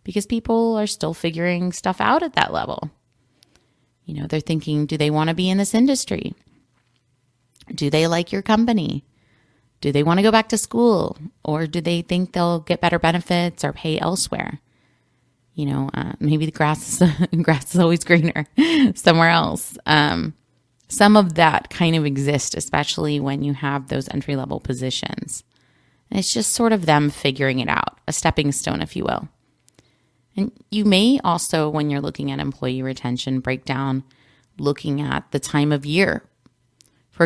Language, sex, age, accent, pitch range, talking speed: English, female, 30-49, American, 140-180 Hz, 170 wpm